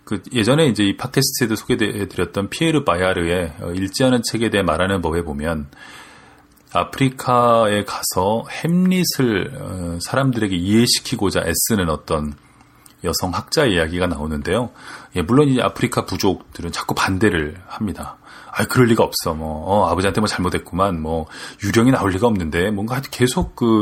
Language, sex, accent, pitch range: Korean, male, native, 90-125 Hz